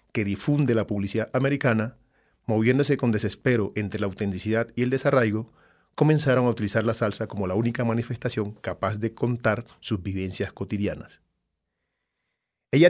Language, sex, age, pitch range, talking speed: English, male, 40-59, 105-135 Hz, 140 wpm